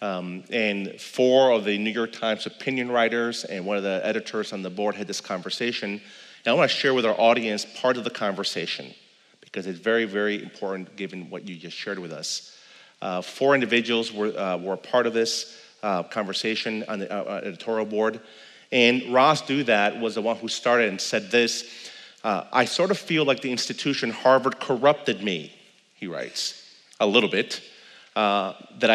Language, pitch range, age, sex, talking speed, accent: English, 100-120 Hz, 40-59, male, 190 wpm, American